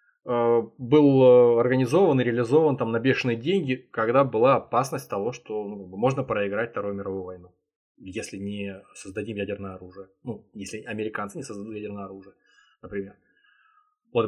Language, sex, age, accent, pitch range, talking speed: Russian, male, 20-39, native, 105-145 Hz, 140 wpm